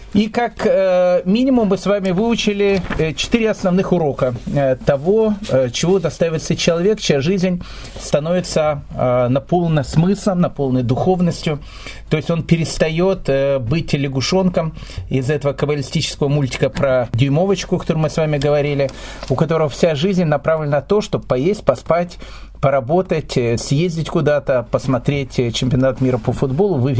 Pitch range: 135-180 Hz